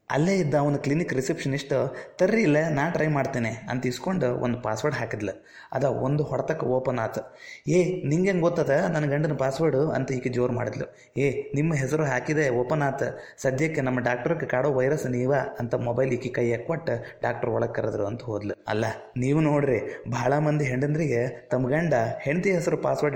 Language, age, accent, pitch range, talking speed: Kannada, 20-39, native, 125-155 Hz, 165 wpm